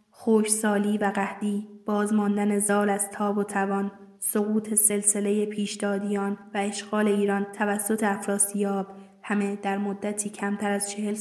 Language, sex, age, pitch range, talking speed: Persian, female, 20-39, 205-220 Hz, 130 wpm